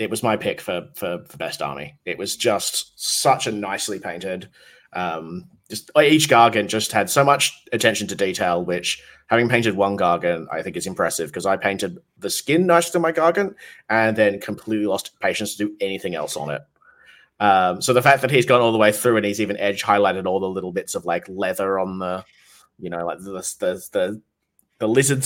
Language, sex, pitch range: English, male, 100-130 Hz